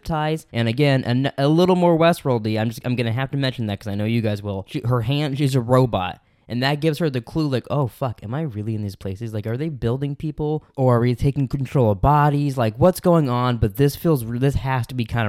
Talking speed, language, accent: 260 wpm, English, American